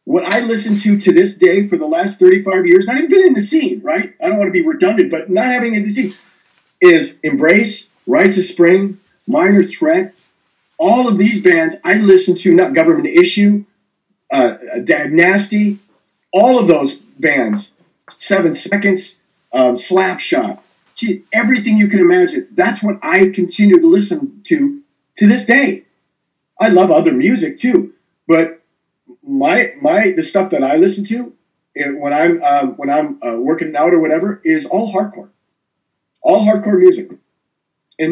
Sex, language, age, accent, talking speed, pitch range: male, English, 40-59, American, 160 wpm, 185-305 Hz